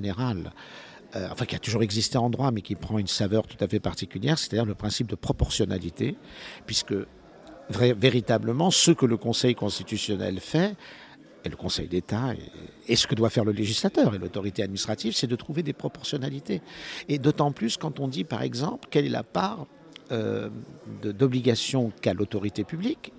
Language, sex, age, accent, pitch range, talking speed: French, male, 50-69, French, 105-135 Hz, 175 wpm